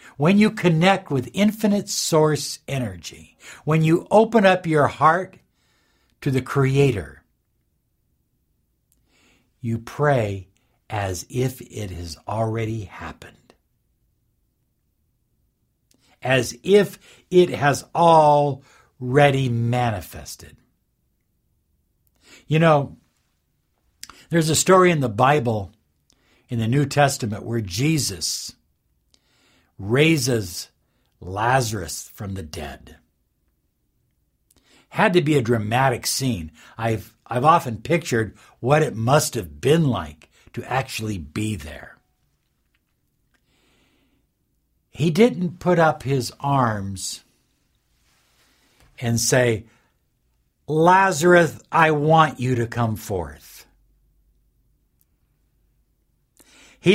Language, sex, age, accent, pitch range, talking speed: English, male, 60-79, American, 110-155 Hz, 90 wpm